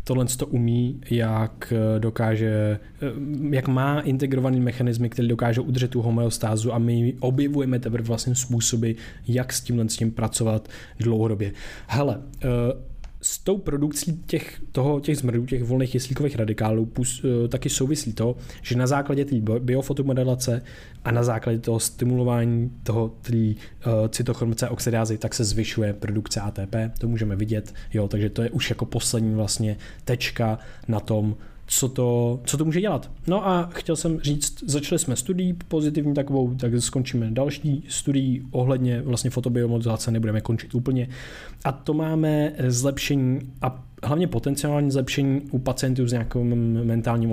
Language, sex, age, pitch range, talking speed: Czech, male, 20-39, 115-135 Hz, 145 wpm